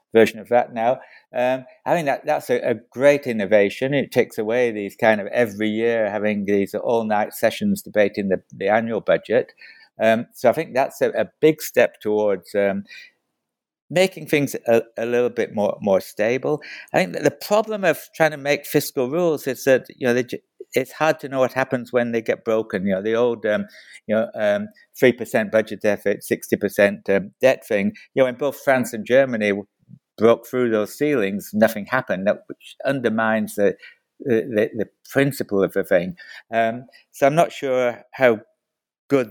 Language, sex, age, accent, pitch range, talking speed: English, male, 60-79, British, 105-140 Hz, 190 wpm